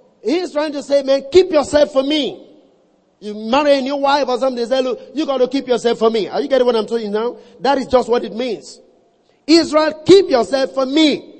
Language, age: English, 40-59